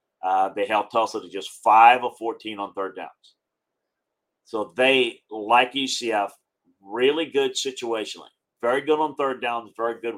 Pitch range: 110-135 Hz